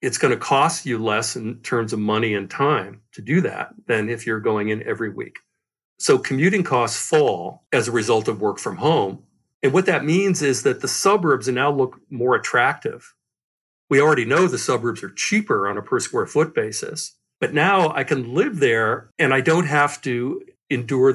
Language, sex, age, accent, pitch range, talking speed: English, male, 50-69, American, 115-160 Hz, 200 wpm